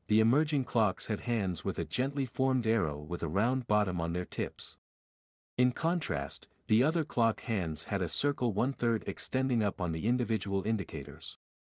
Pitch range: 95-125 Hz